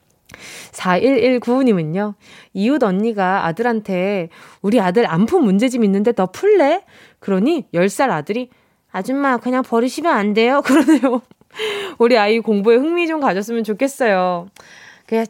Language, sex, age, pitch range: Korean, female, 20-39, 195-275 Hz